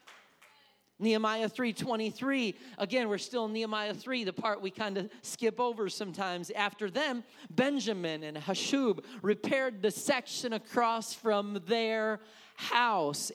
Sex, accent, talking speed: male, American, 125 wpm